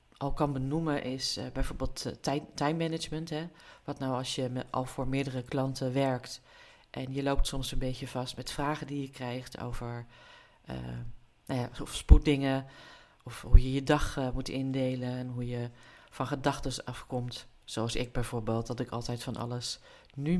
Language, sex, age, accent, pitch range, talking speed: Dutch, female, 40-59, Dutch, 125-160 Hz, 170 wpm